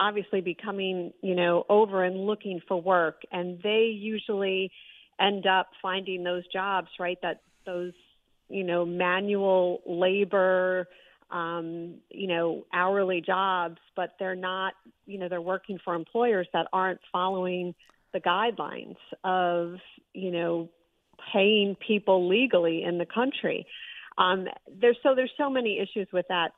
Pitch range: 175-205 Hz